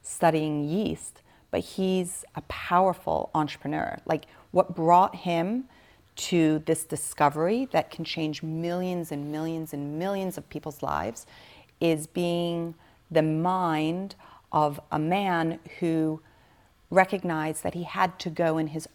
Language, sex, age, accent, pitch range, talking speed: English, female, 40-59, American, 150-170 Hz, 130 wpm